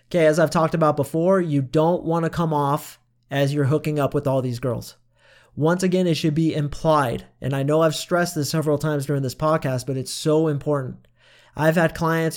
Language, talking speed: English, 215 wpm